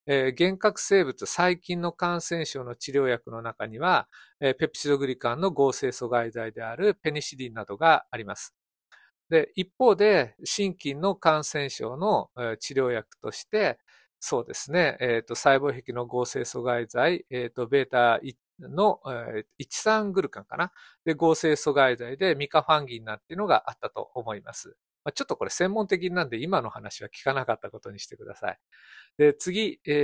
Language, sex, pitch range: Japanese, male, 125-195 Hz